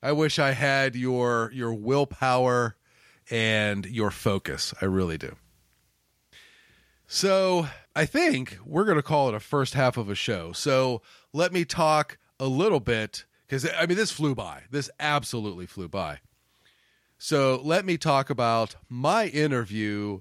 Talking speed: 150 wpm